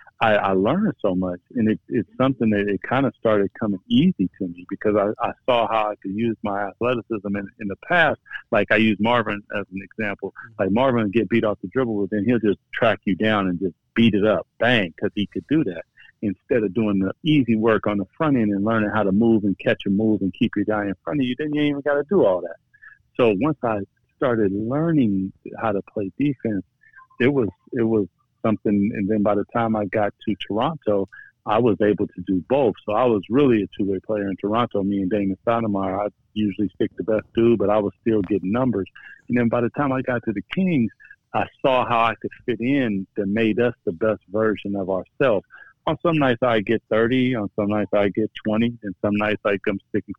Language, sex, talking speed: English, male, 240 wpm